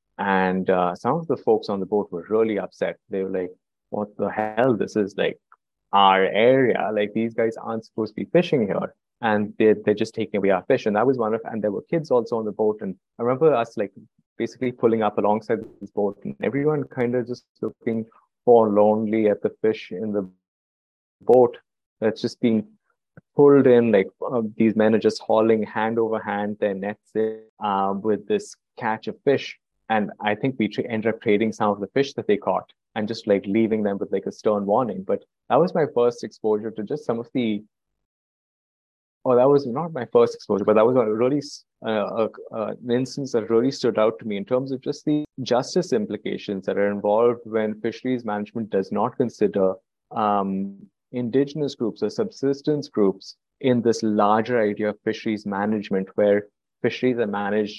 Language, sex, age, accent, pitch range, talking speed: English, male, 20-39, Indian, 105-120 Hz, 195 wpm